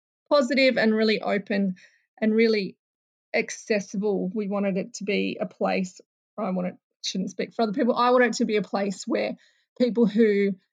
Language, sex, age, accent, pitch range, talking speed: English, female, 20-39, Australian, 200-230 Hz, 180 wpm